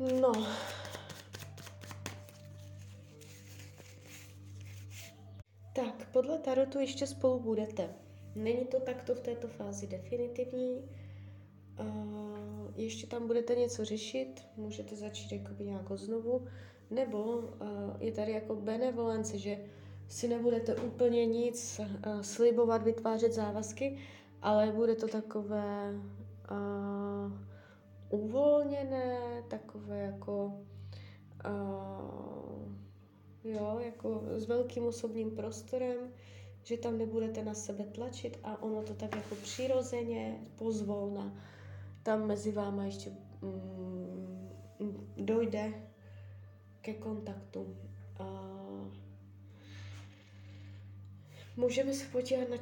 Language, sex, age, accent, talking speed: Czech, female, 20-39, native, 90 wpm